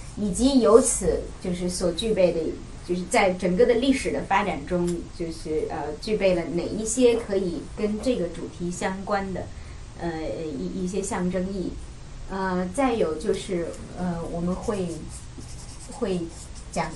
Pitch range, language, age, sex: 175-225 Hz, Chinese, 30-49, female